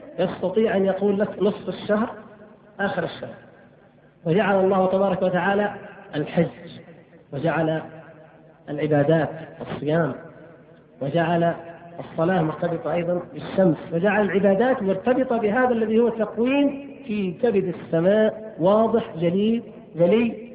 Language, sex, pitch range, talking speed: Arabic, male, 165-225 Hz, 100 wpm